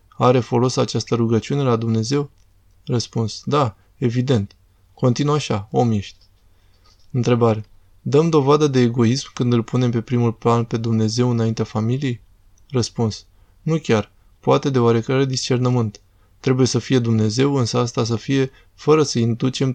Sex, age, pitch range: male, 20-39, 110-130 Hz